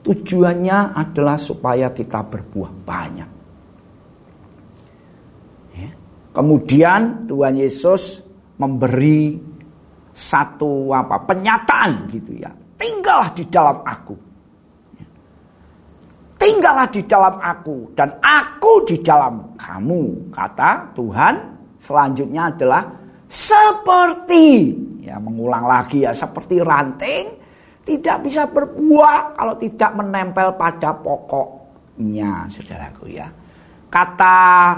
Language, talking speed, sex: Indonesian, 85 wpm, male